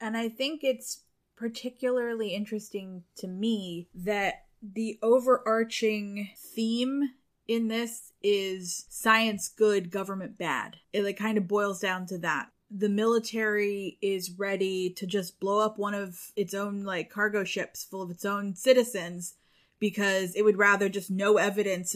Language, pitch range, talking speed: English, 190-220 Hz, 150 wpm